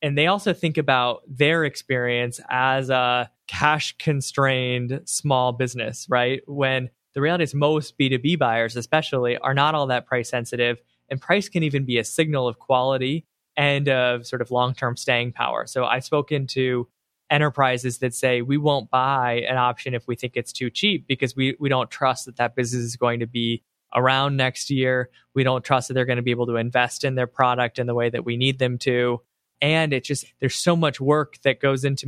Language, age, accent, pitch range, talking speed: English, 10-29, American, 120-140 Hz, 200 wpm